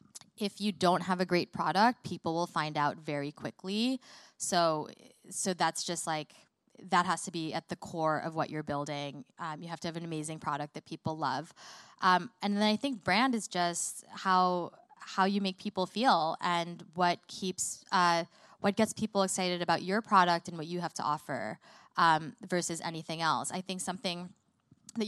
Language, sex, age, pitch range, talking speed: English, female, 20-39, 165-195 Hz, 190 wpm